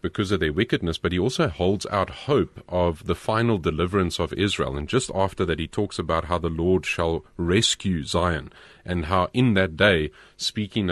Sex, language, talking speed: male, English, 190 wpm